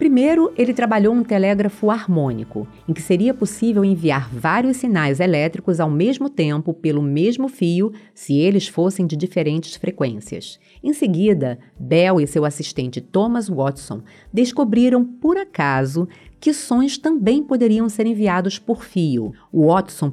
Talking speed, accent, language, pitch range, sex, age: 135 wpm, Brazilian, Portuguese, 150-215 Hz, female, 30-49